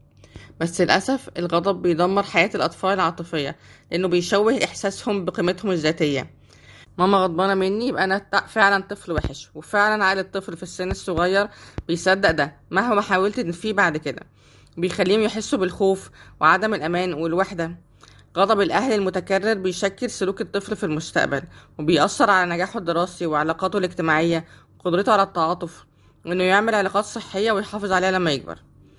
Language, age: Arabic, 20-39